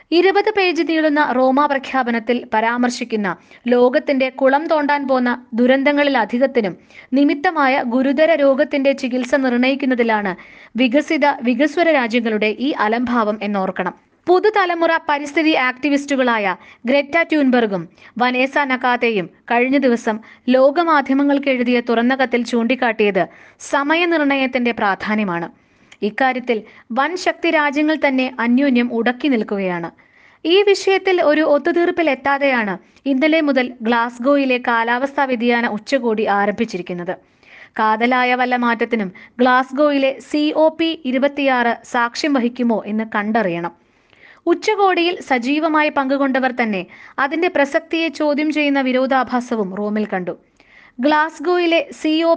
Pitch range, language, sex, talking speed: 235-295 Hz, Malayalam, female, 95 wpm